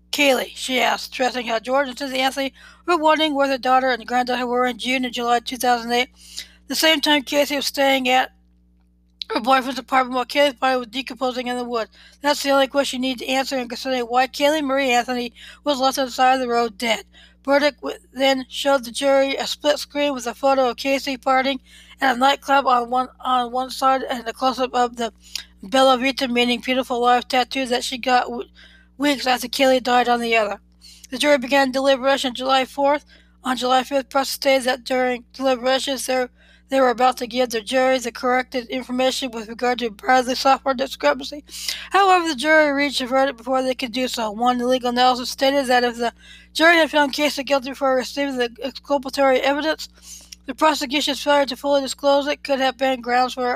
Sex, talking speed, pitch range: female, 200 wpm, 245-275 Hz